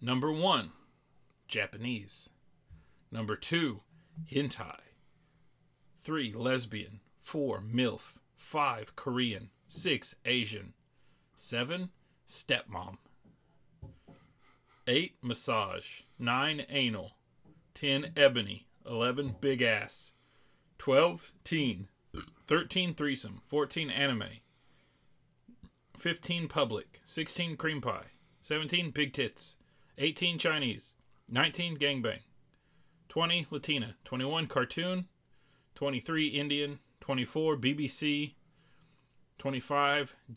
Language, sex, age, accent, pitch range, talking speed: English, male, 30-49, American, 115-155 Hz, 75 wpm